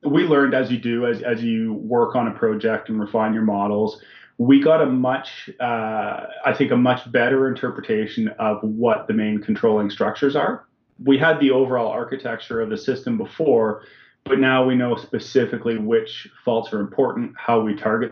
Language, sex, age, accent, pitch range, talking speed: English, male, 30-49, American, 110-135 Hz, 180 wpm